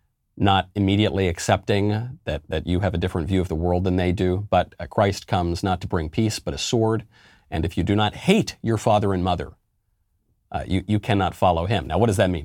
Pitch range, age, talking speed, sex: 90-105 Hz, 40-59, 230 wpm, male